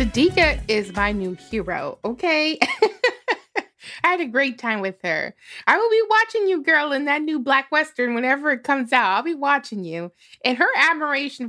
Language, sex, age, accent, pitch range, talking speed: English, female, 20-39, American, 195-300 Hz, 185 wpm